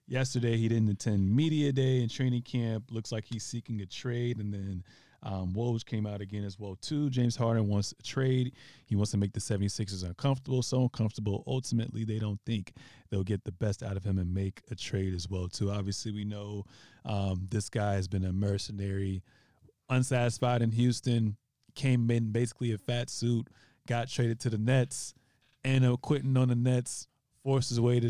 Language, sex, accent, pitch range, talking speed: English, male, American, 105-125 Hz, 190 wpm